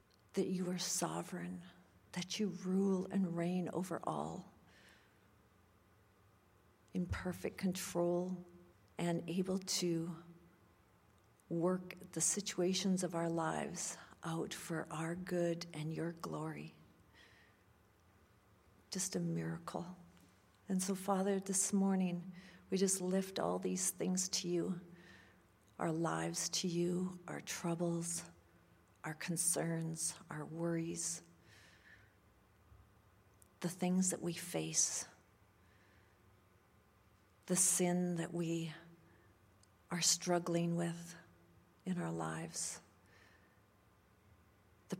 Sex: female